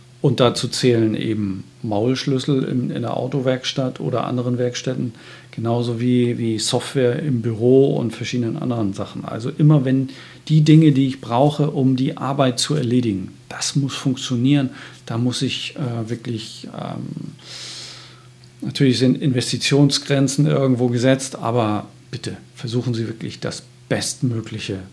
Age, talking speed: 40-59, 135 wpm